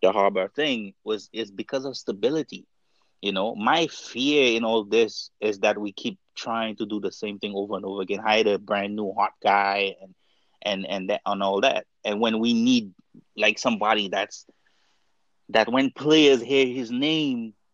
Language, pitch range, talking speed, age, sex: English, 105-135 Hz, 185 wpm, 30-49, male